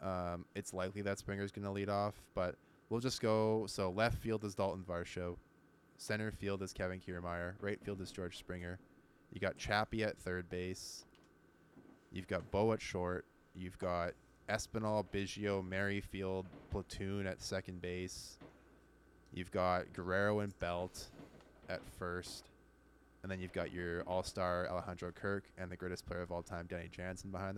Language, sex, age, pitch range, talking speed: English, male, 20-39, 90-100 Hz, 160 wpm